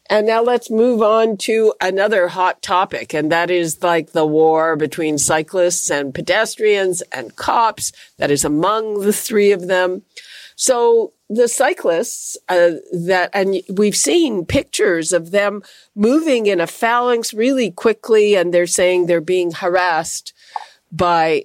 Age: 50-69